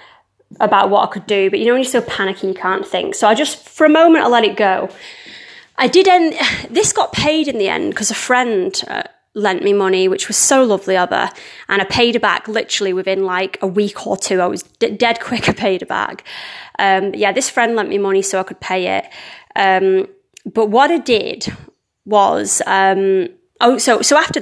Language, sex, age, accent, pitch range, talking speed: English, female, 20-39, British, 195-250 Hz, 215 wpm